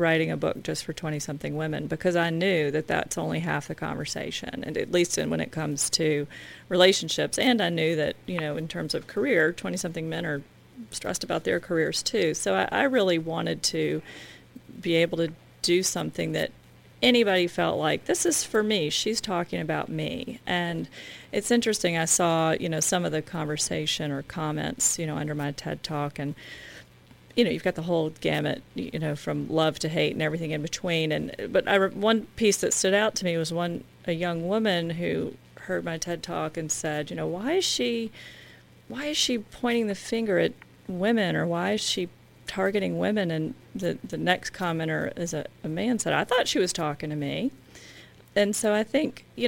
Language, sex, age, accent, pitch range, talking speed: English, female, 40-59, American, 155-205 Hz, 205 wpm